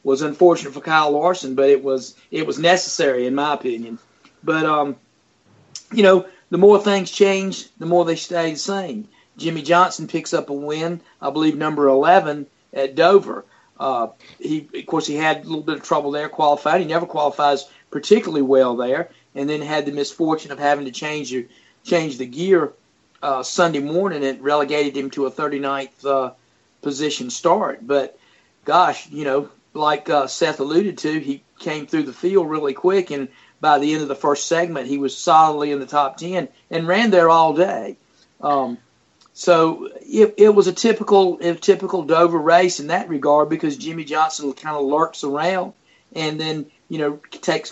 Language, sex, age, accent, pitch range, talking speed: English, male, 50-69, American, 140-170 Hz, 180 wpm